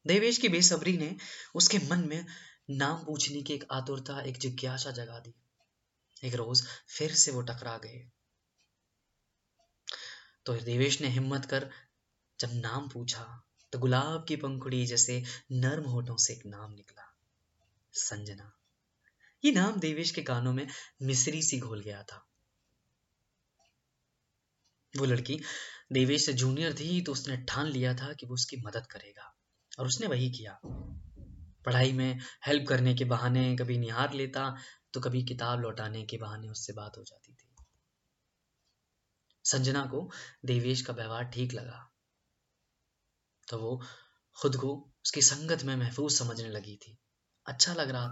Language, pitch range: Hindi, 120-145 Hz